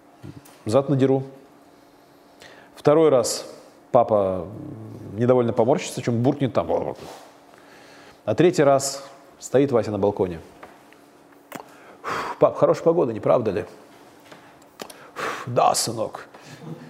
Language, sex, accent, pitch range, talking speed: Russian, male, native, 110-140 Hz, 90 wpm